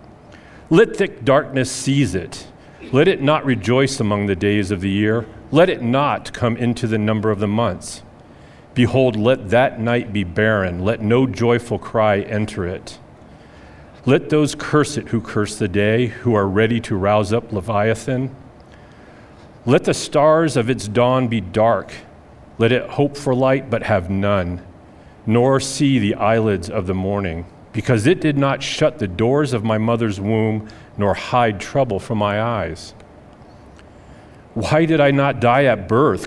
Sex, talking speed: male, 165 wpm